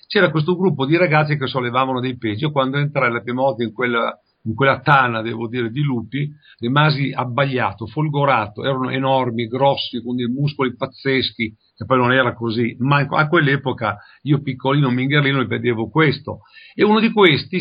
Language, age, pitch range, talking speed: Italian, 50-69, 125-155 Hz, 175 wpm